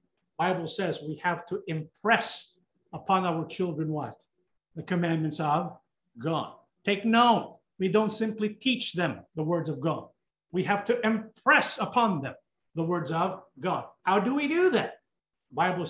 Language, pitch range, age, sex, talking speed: English, 165-195 Hz, 50-69, male, 155 wpm